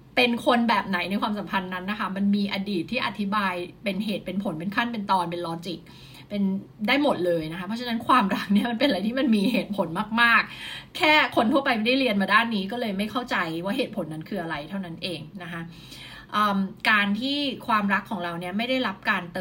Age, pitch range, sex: 20-39, 180-225 Hz, female